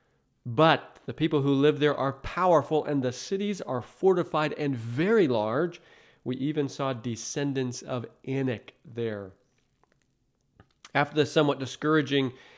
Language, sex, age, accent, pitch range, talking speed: English, male, 40-59, American, 130-165 Hz, 130 wpm